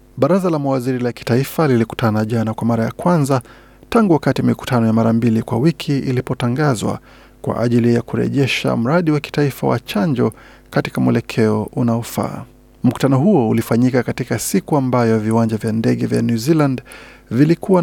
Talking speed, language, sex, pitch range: 150 wpm, Swahili, male, 120-145 Hz